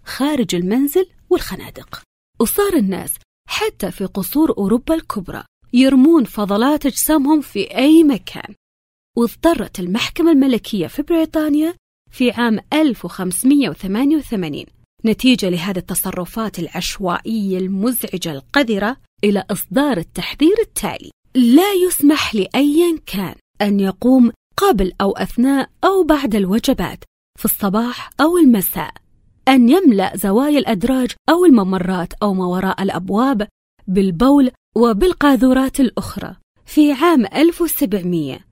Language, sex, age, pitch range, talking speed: Arabic, female, 30-49, 195-290 Hz, 105 wpm